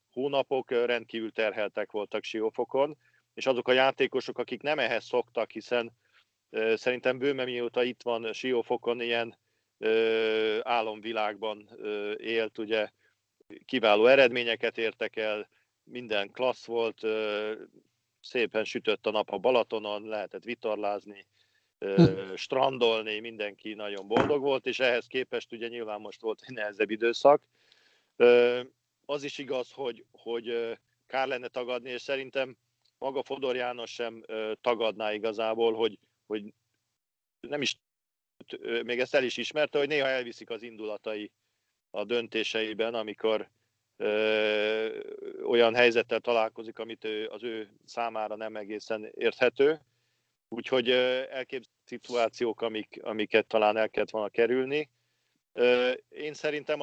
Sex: male